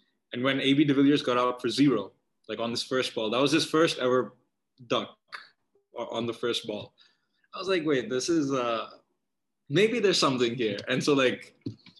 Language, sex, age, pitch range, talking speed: English, male, 20-39, 115-140 Hz, 190 wpm